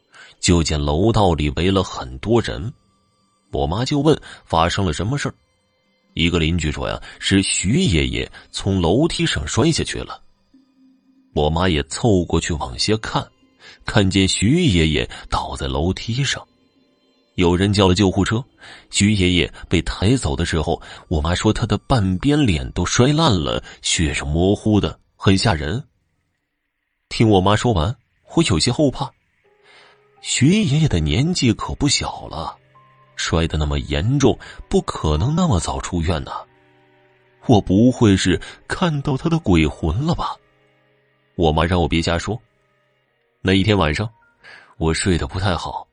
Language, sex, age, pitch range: Chinese, male, 30-49, 80-125 Hz